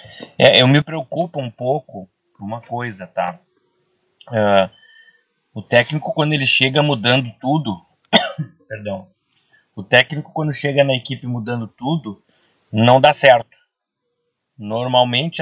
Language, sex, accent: Portuguese, male, Brazilian